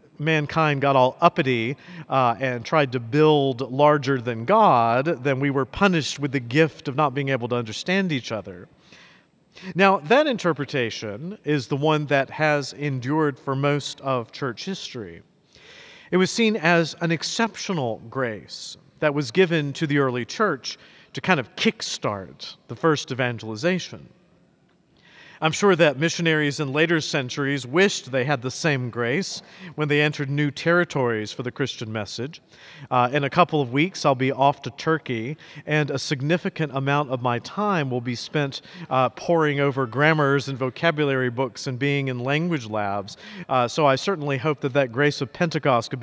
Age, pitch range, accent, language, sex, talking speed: 50-69, 130-165 Hz, American, English, male, 165 wpm